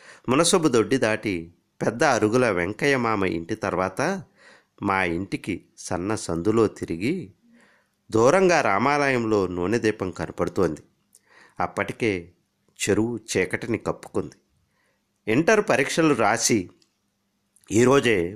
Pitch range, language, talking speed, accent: 95-160 Hz, Telugu, 90 wpm, native